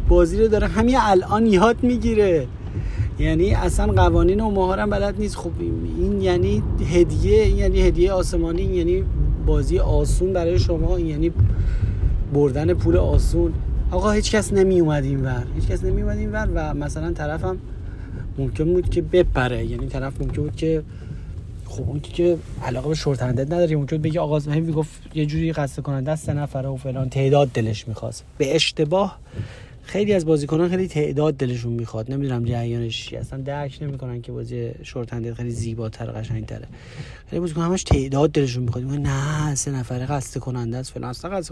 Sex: male